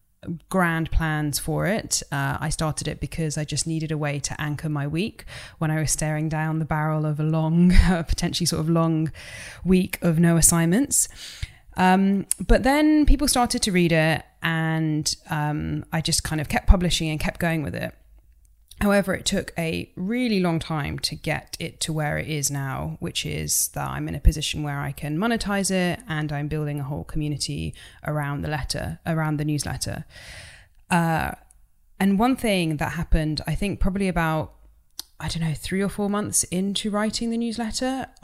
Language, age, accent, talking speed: English, 20-39, British, 185 wpm